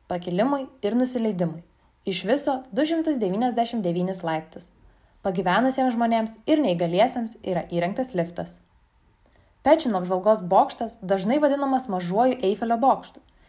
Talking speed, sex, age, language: 100 wpm, female, 20-39, Czech